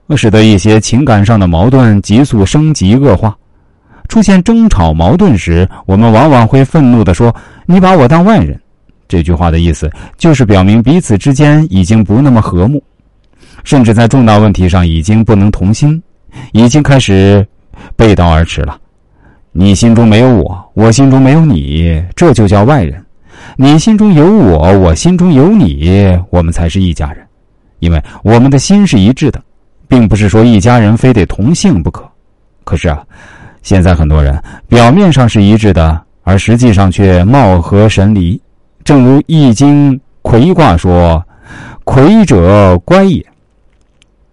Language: Chinese